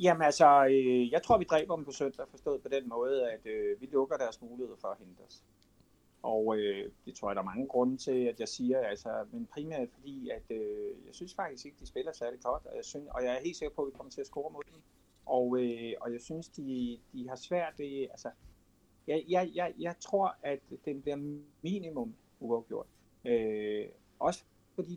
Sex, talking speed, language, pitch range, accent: male, 225 wpm, Danish, 125-195 Hz, native